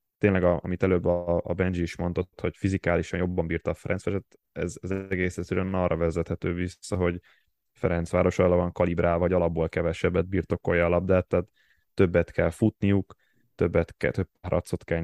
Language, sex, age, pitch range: Hungarian, male, 10-29, 85-95 Hz